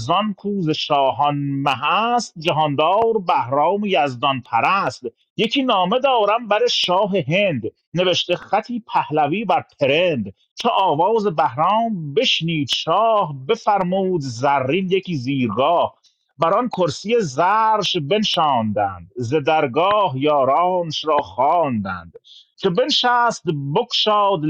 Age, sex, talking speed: 40-59, male, 100 wpm